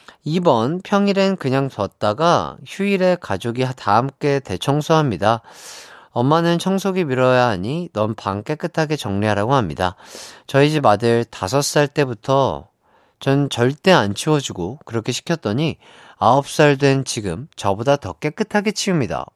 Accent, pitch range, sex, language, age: native, 115-180 Hz, male, Korean, 30-49